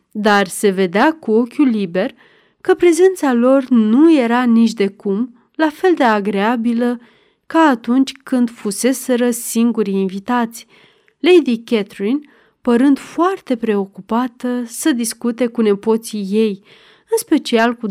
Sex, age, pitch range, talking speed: female, 30-49, 210-260 Hz, 125 wpm